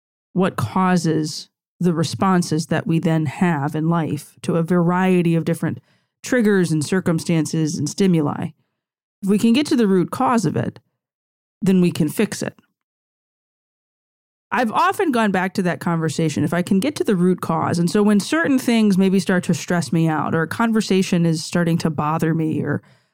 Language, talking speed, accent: English, 180 wpm, American